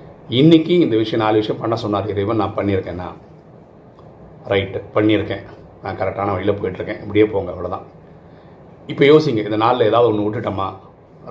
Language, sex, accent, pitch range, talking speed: Tamil, male, native, 100-115 Hz, 140 wpm